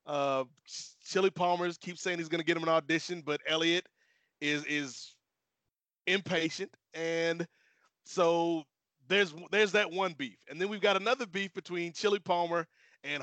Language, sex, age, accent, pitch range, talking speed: English, male, 30-49, American, 160-195 Hz, 155 wpm